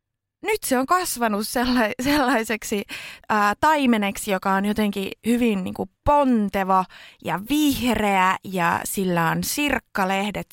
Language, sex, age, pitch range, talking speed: Finnish, female, 20-39, 175-245 Hz, 95 wpm